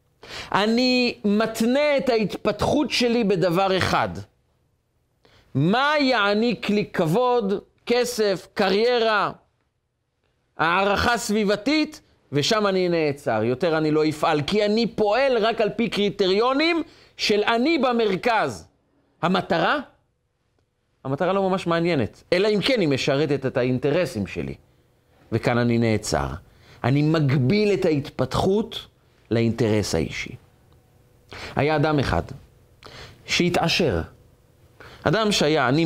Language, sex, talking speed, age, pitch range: Hebrew, male, 100 wpm, 40-59, 125-210 Hz